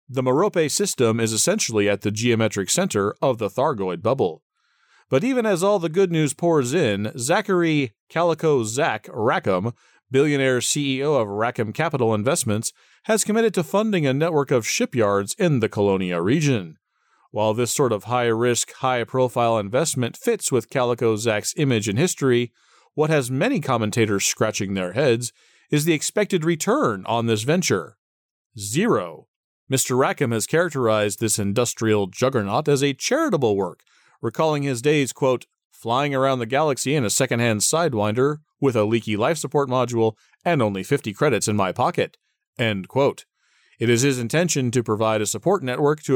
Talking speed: 155 wpm